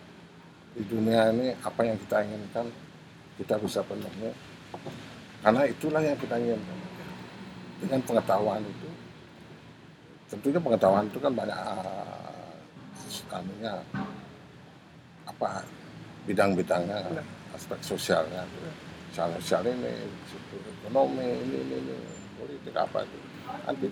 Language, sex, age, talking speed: Indonesian, male, 50-69, 100 wpm